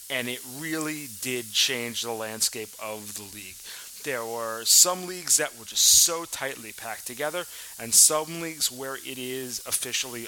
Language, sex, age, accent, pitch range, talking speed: English, male, 30-49, American, 115-160 Hz, 165 wpm